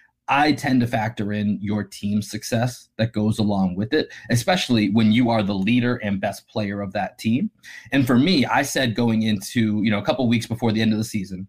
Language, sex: English, male